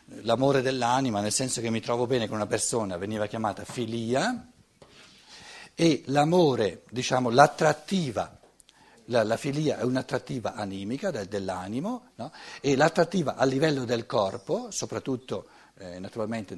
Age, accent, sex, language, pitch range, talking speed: 60-79, native, male, Italian, 110-145 Hz, 125 wpm